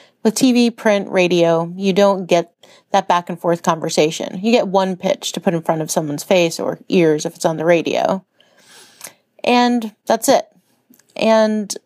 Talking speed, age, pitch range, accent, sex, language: 160 wpm, 30-49, 175-210 Hz, American, female, English